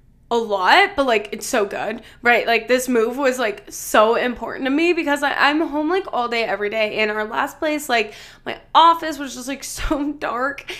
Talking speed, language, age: 205 wpm, English, 10-29